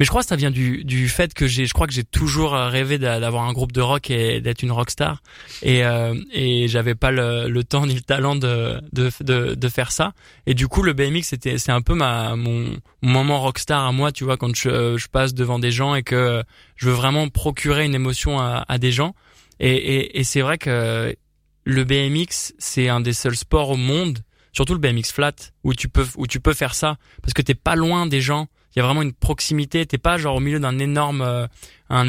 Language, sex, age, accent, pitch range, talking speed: French, male, 20-39, French, 120-140 Hz, 240 wpm